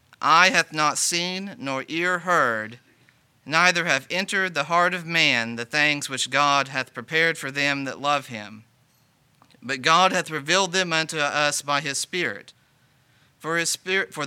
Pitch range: 125-155 Hz